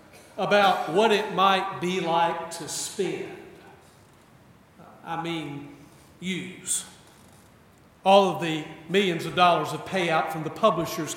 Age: 50-69